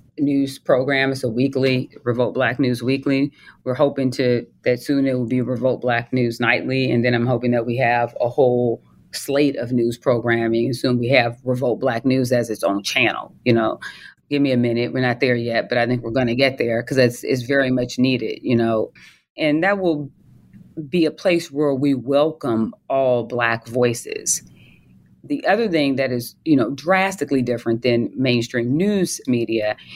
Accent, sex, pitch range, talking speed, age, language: American, female, 120-145 Hz, 190 wpm, 30-49, English